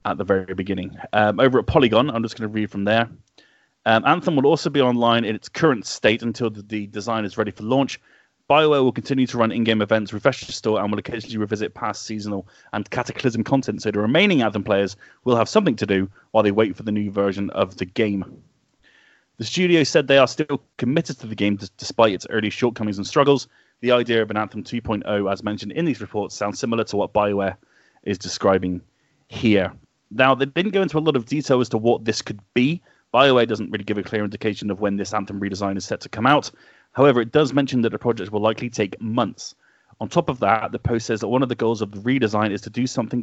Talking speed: 235 wpm